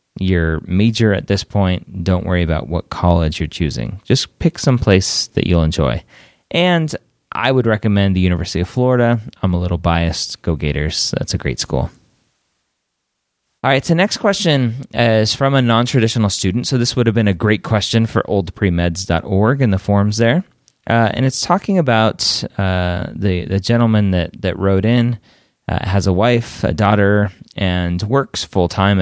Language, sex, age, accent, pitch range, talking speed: English, male, 30-49, American, 90-115 Hz, 175 wpm